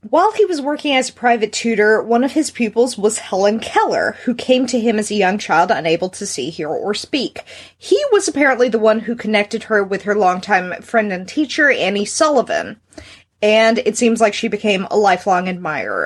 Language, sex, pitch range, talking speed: English, female, 200-285 Hz, 200 wpm